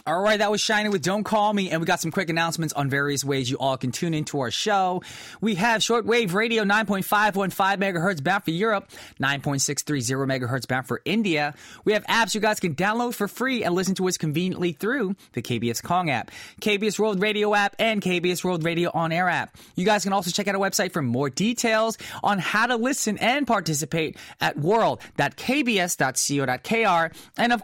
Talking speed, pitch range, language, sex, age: 195 wpm, 165-225 Hz, English, male, 20-39